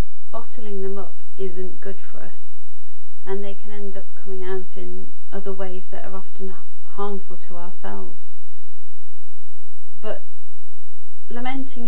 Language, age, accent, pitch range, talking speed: English, 30-49, British, 180-200 Hz, 125 wpm